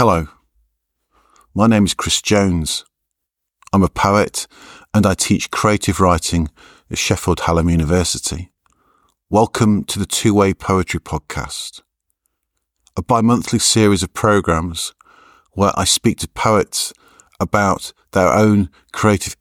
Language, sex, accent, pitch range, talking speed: English, male, British, 80-95 Hz, 120 wpm